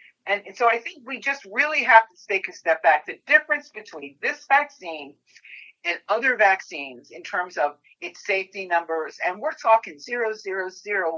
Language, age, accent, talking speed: English, 50-69, American, 175 wpm